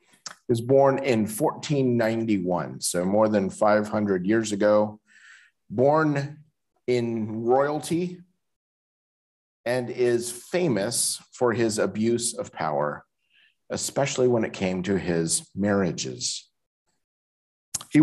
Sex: male